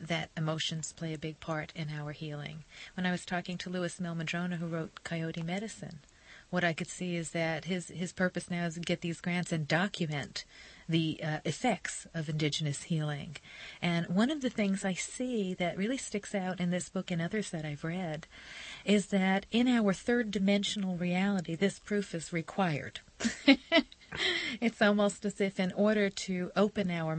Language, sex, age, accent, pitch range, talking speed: English, female, 40-59, American, 165-200 Hz, 180 wpm